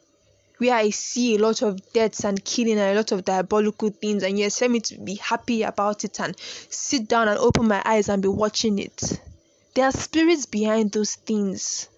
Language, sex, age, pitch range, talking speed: English, female, 20-39, 205-235 Hz, 205 wpm